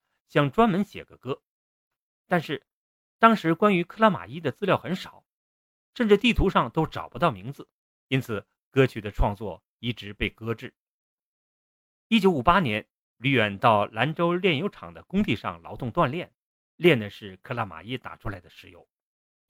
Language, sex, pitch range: Chinese, male, 110-175 Hz